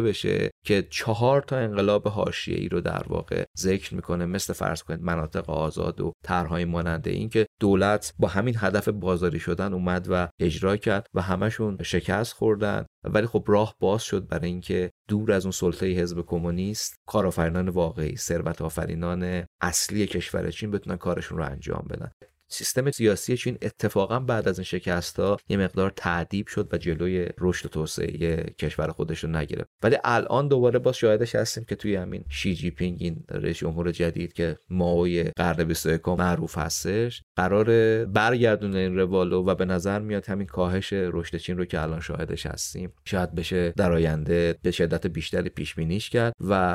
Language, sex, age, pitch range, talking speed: Persian, male, 30-49, 85-105 Hz, 165 wpm